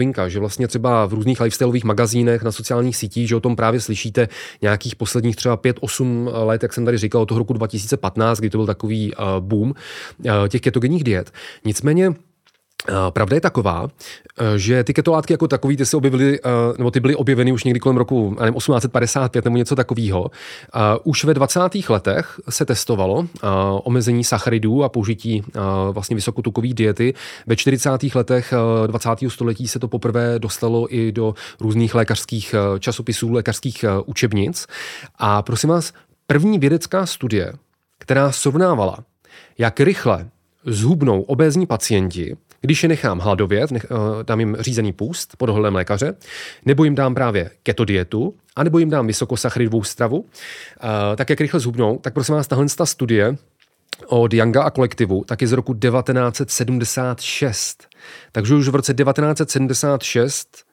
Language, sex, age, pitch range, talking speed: Czech, male, 30-49, 110-135 Hz, 150 wpm